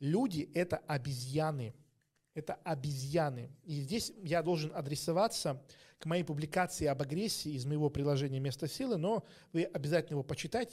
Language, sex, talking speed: Russian, male, 140 wpm